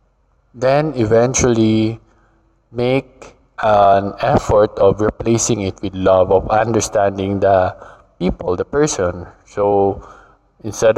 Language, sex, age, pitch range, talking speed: English, male, 20-39, 105-125 Hz, 100 wpm